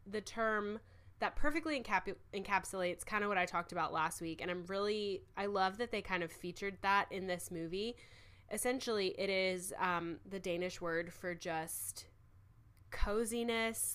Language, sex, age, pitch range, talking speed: English, female, 10-29, 165-195 Hz, 160 wpm